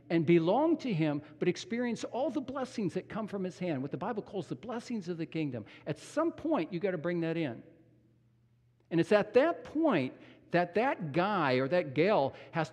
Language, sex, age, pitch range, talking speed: English, male, 50-69, 120-155 Hz, 210 wpm